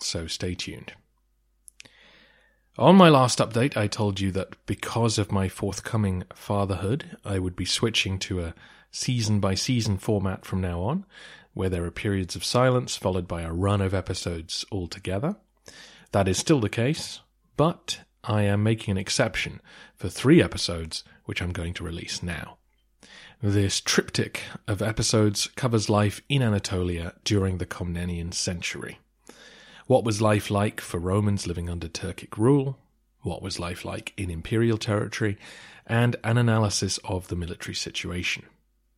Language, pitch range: English, 90-110 Hz